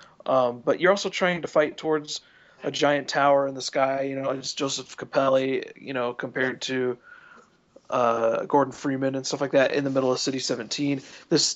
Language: English